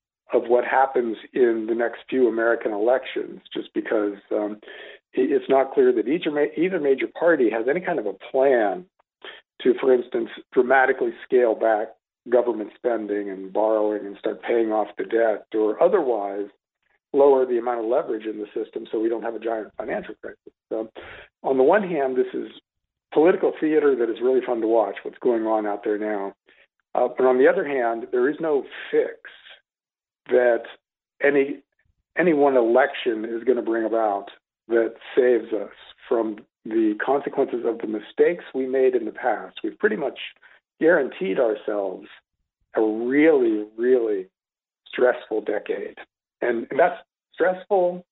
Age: 50-69